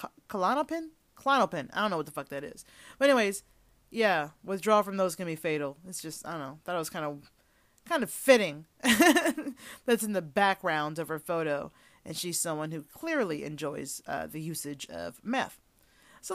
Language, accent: English, American